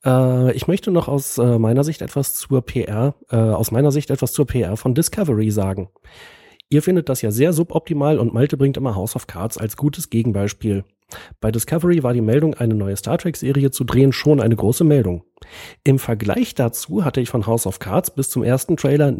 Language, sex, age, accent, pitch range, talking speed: German, male, 40-59, German, 110-145 Hz, 195 wpm